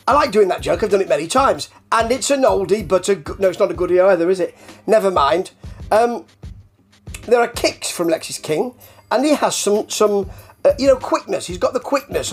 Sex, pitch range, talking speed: male, 175-250 Hz, 225 wpm